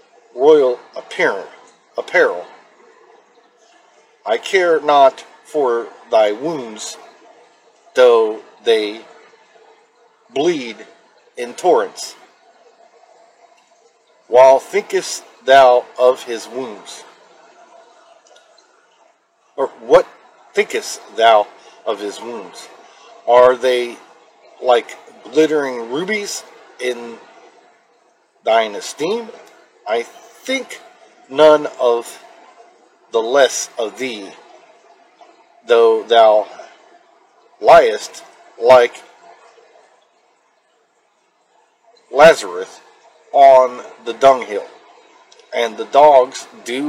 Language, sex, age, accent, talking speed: English, male, 50-69, American, 70 wpm